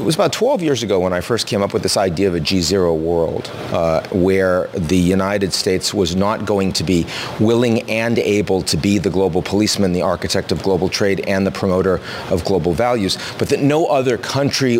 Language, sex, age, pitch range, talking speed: English, male, 40-59, 95-120 Hz, 210 wpm